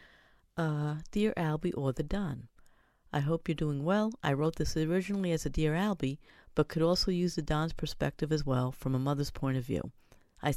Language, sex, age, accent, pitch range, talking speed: English, female, 50-69, American, 135-165 Hz, 200 wpm